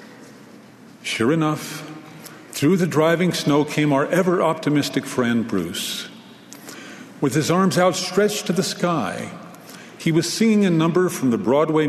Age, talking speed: 50-69, 130 wpm